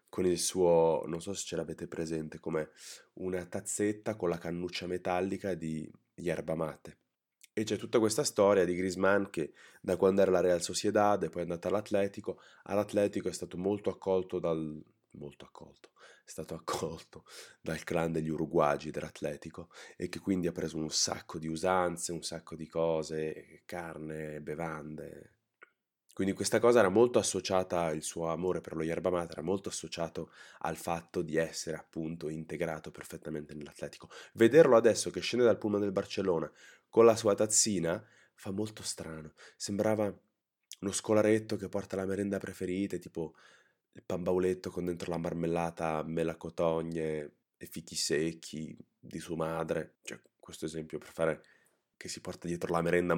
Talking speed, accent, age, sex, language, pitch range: 160 wpm, native, 20-39, male, Italian, 80-95 Hz